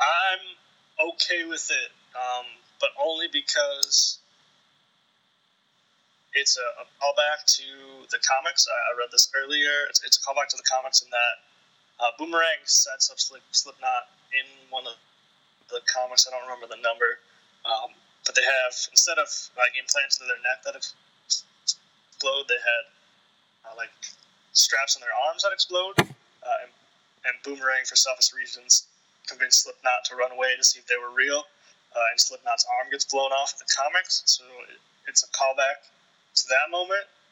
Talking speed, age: 165 wpm, 20-39